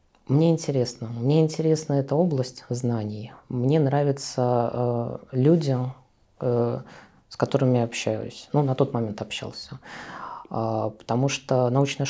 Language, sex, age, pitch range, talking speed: Russian, female, 20-39, 120-140 Hz, 125 wpm